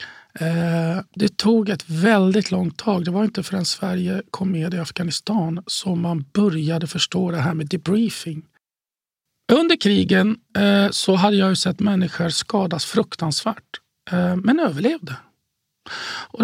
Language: Swedish